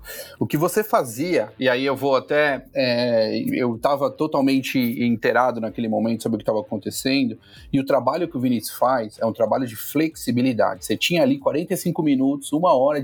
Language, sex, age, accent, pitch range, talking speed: Portuguese, male, 40-59, Brazilian, 135-200 Hz, 180 wpm